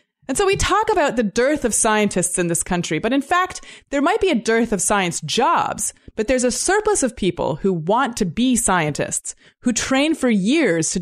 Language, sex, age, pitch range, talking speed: English, female, 20-39, 190-275 Hz, 215 wpm